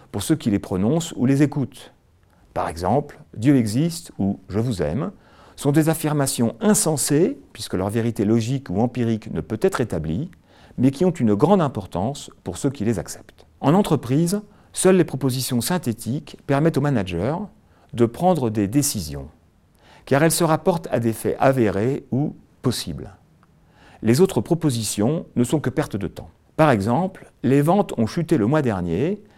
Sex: male